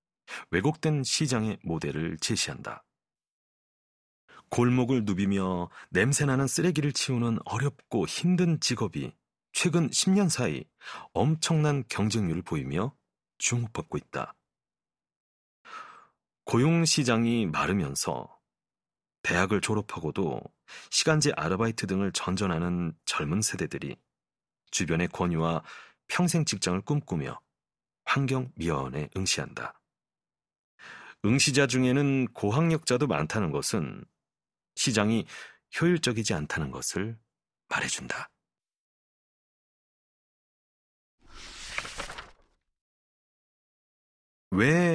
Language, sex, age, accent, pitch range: Korean, male, 40-59, native, 100-150 Hz